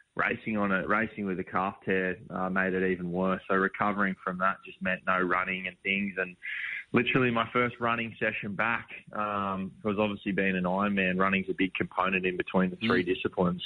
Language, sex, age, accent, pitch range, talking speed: English, male, 20-39, Australian, 95-105 Hz, 200 wpm